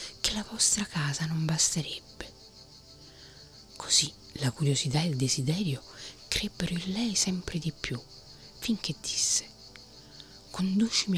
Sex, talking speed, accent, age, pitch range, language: female, 115 wpm, native, 40-59, 125-175 Hz, Italian